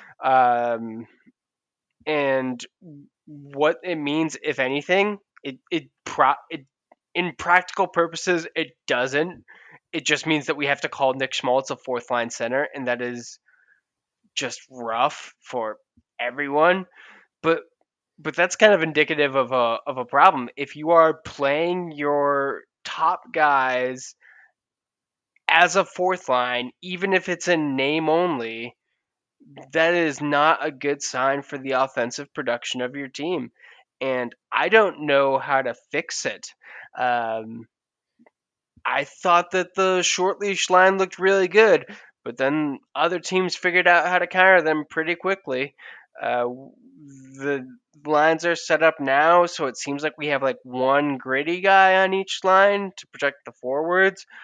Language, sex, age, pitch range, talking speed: English, male, 20-39, 135-180 Hz, 145 wpm